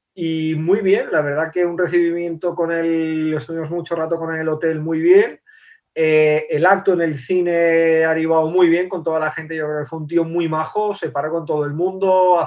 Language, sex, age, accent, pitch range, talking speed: Spanish, male, 30-49, Spanish, 150-170 Hz, 240 wpm